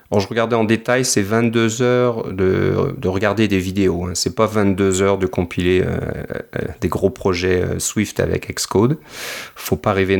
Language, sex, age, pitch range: French, male, 30-49, 95-110 Hz